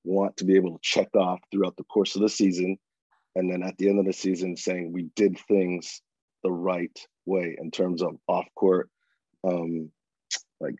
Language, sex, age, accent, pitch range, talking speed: English, male, 30-49, American, 90-100 Hz, 195 wpm